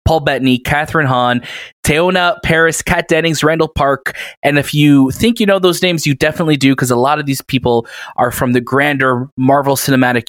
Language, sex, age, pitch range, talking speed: English, male, 20-39, 125-155 Hz, 190 wpm